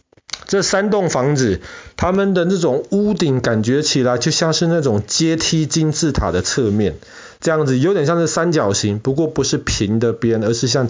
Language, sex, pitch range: Chinese, male, 115-165 Hz